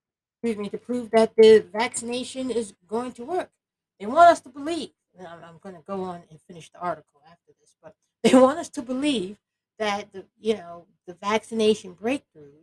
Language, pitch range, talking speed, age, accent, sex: English, 175-250 Hz, 190 wpm, 60-79, American, female